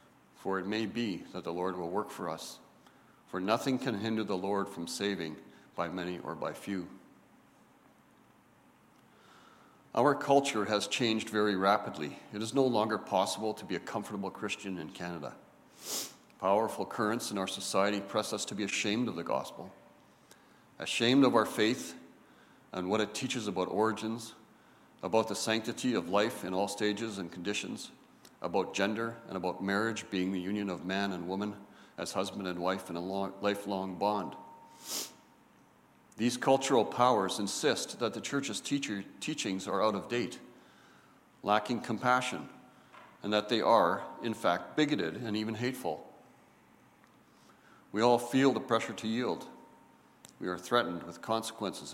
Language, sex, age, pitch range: English, male, 50-69, 95-115 Hz